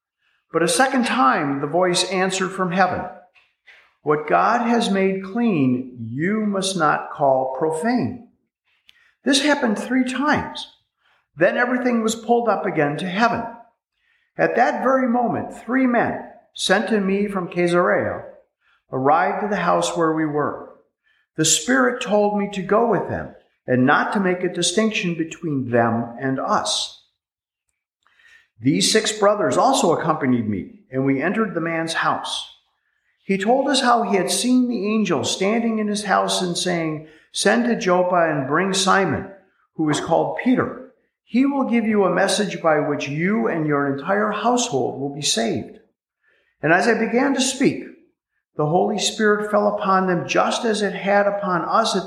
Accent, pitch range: American, 165-235 Hz